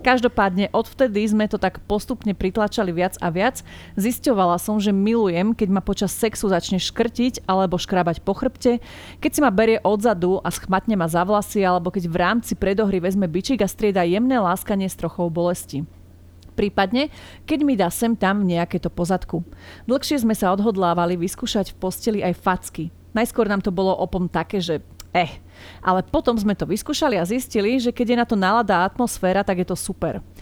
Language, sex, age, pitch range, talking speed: Slovak, female, 30-49, 180-230 Hz, 180 wpm